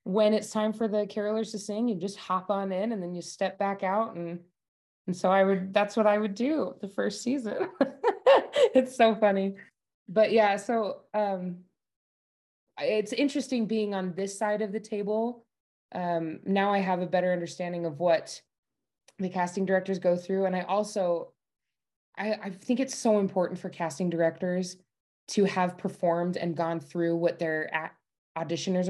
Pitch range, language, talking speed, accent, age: 170-210 Hz, English, 170 wpm, American, 20-39